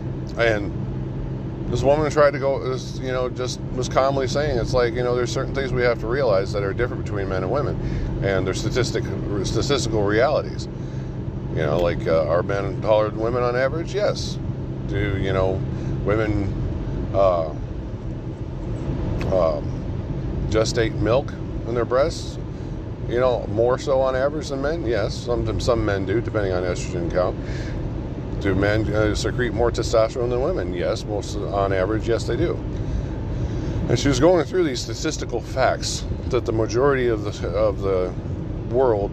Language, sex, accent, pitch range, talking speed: English, male, American, 95-125 Hz, 160 wpm